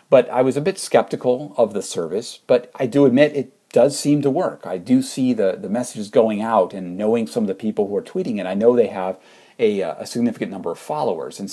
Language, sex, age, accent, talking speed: English, male, 50-69, American, 245 wpm